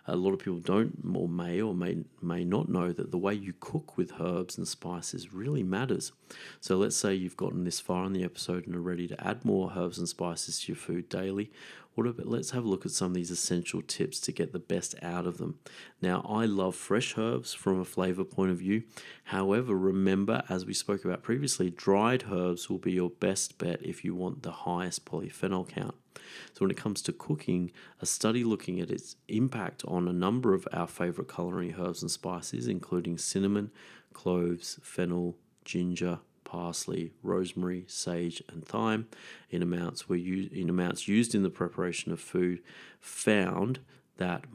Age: 30-49